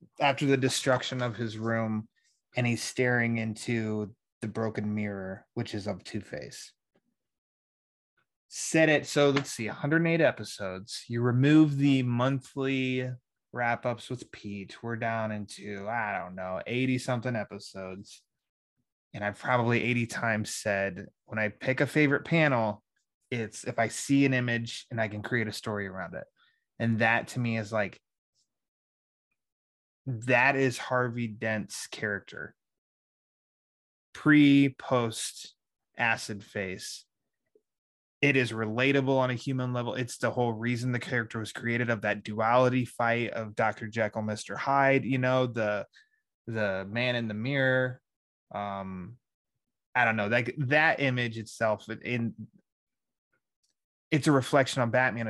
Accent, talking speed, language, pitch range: American, 135 wpm, English, 110-130 Hz